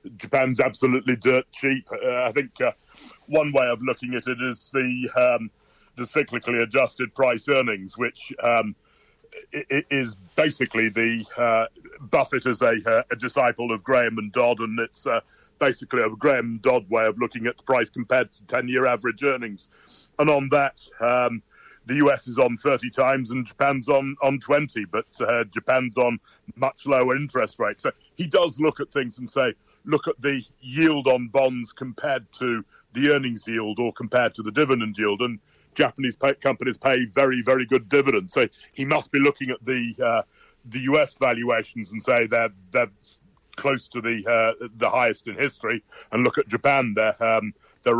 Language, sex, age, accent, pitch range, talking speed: English, male, 40-59, British, 115-135 Hz, 180 wpm